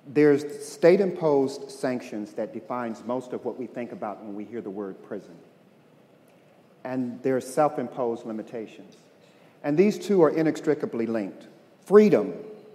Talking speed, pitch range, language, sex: 130 wpm, 125-185 Hz, English, male